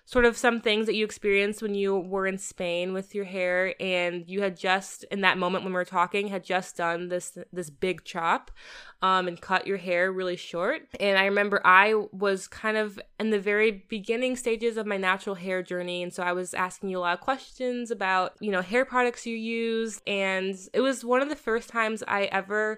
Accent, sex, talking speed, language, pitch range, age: American, female, 220 wpm, English, 185-215 Hz, 20-39